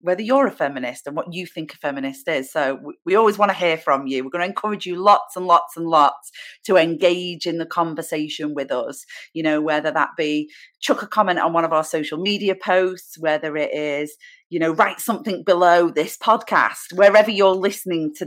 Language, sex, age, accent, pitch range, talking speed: English, female, 30-49, British, 155-230 Hz, 215 wpm